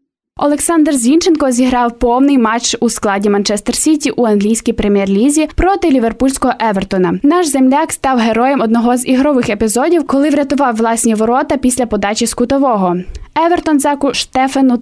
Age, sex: 10-29, female